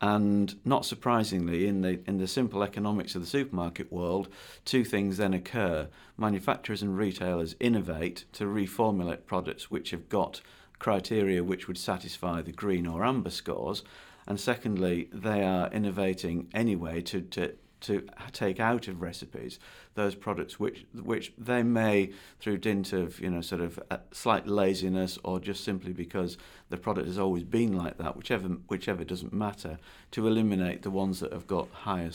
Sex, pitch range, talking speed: male, 90-105 Hz, 160 wpm